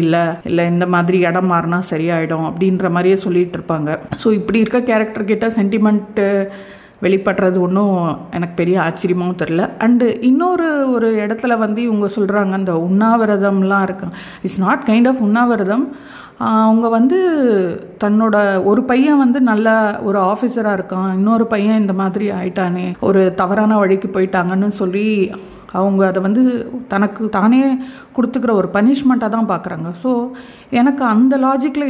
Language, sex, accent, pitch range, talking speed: Tamil, female, native, 180-220 Hz, 130 wpm